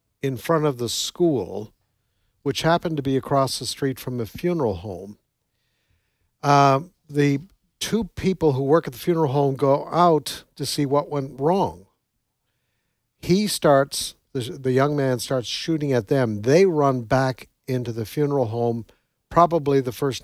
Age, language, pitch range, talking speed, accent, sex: 60-79, English, 125-150 Hz, 155 wpm, American, male